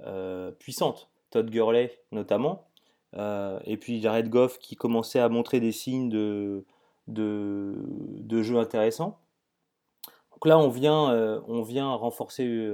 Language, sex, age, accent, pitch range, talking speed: French, male, 30-49, French, 105-125 Hz, 120 wpm